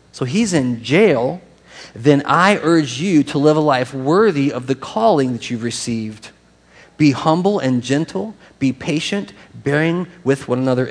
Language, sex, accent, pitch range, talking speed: English, male, American, 120-155 Hz, 160 wpm